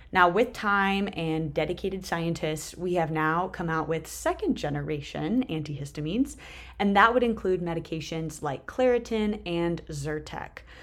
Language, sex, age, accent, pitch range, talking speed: English, female, 20-39, American, 155-190 Hz, 135 wpm